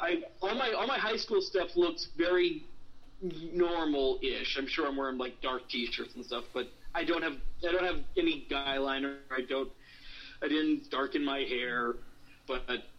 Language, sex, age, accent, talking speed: English, male, 40-59, American, 180 wpm